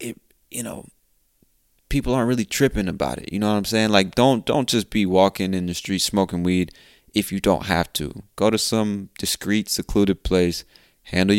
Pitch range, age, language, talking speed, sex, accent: 85-105 Hz, 20-39, English, 190 wpm, male, American